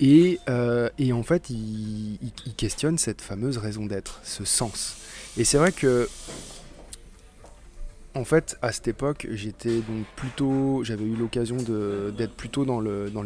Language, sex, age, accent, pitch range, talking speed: French, male, 20-39, French, 105-130 Hz, 165 wpm